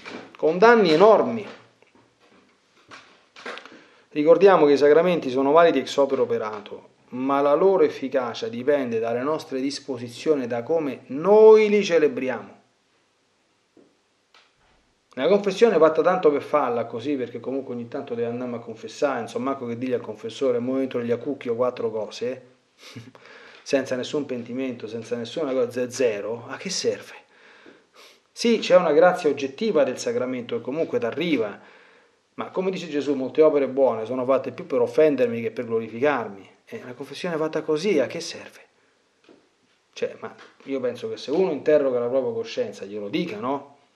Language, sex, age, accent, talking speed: Italian, male, 40-59, native, 150 wpm